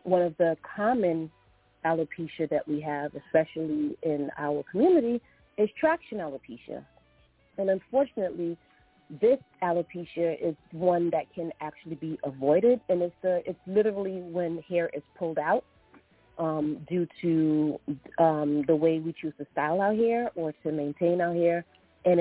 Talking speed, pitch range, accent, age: 145 wpm, 150-180 Hz, American, 40-59